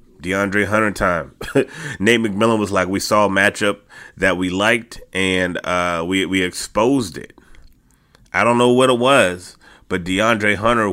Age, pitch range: 30-49, 90-120 Hz